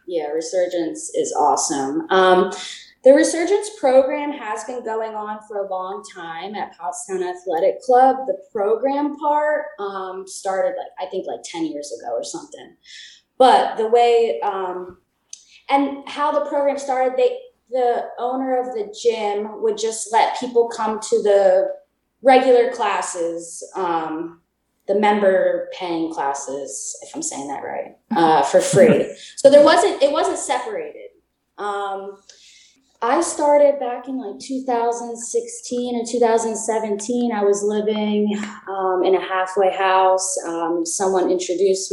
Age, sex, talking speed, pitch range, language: 20-39, female, 140 wpm, 185-265 Hz, English